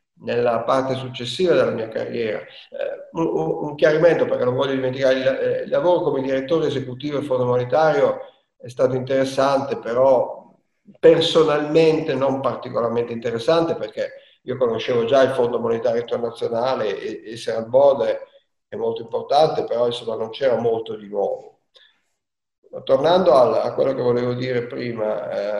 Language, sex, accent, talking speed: Italian, male, native, 135 wpm